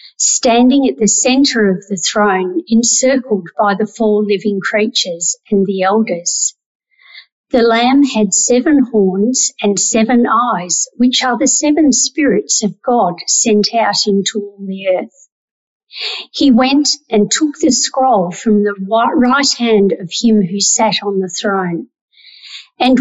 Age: 50-69